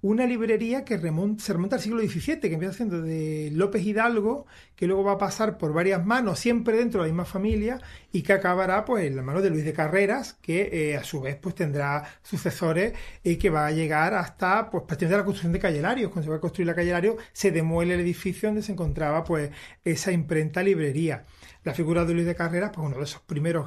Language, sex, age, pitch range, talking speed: Spanish, male, 40-59, 165-200 Hz, 230 wpm